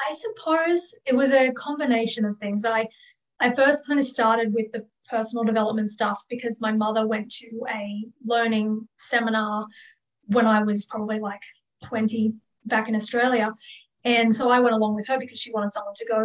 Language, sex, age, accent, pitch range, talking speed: English, female, 30-49, Australian, 220-255 Hz, 180 wpm